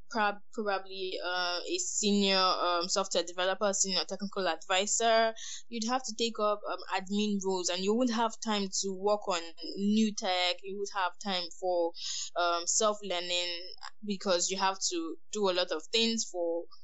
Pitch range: 190-230 Hz